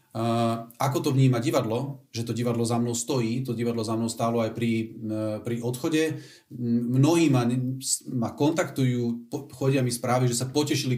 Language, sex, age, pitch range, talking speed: Slovak, male, 40-59, 115-135 Hz, 160 wpm